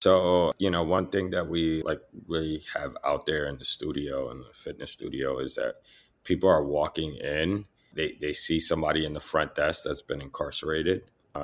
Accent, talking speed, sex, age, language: American, 195 wpm, male, 30-49, English